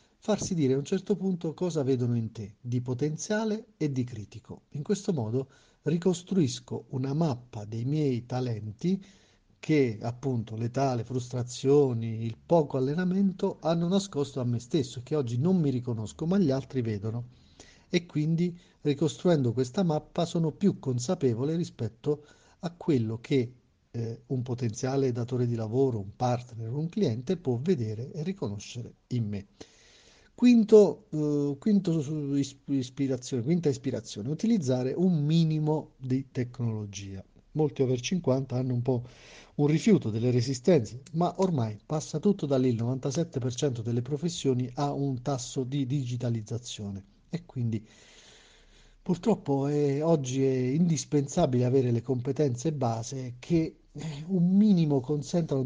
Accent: native